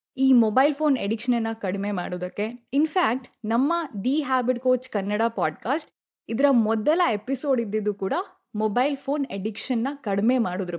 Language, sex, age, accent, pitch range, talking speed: Kannada, female, 20-39, native, 210-275 Hz, 140 wpm